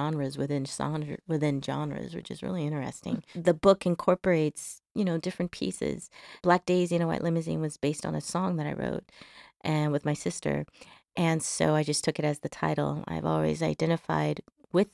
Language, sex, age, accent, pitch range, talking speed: English, female, 30-49, American, 155-180 Hz, 185 wpm